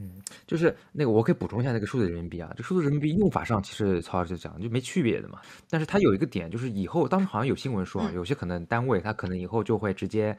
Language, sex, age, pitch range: Chinese, male, 20-39, 90-120 Hz